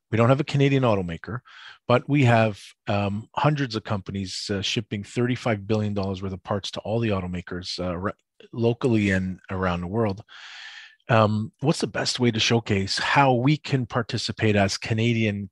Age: 40-59